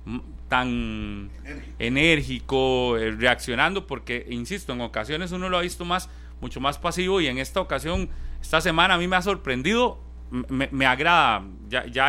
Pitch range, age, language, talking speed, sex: 115-180 Hz, 30-49, Spanish, 155 wpm, male